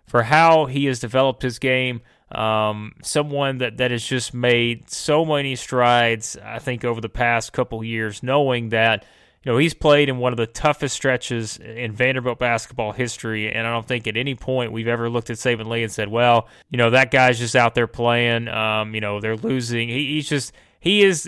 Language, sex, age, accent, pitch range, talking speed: English, male, 30-49, American, 115-130 Hz, 210 wpm